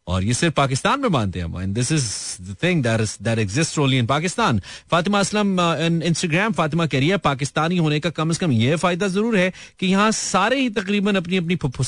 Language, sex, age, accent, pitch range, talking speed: Hindi, male, 30-49, native, 110-175 Hz, 185 wpm